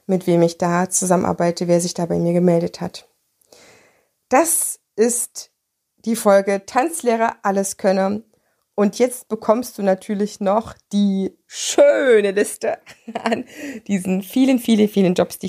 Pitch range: 175-235 Hz